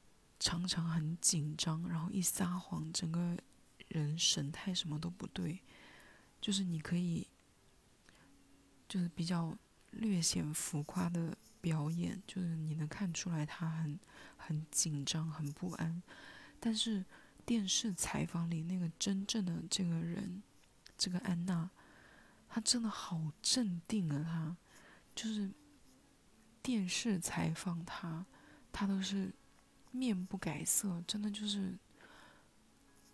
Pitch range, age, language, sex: 170-200 Hz, 20-39, Chinese, female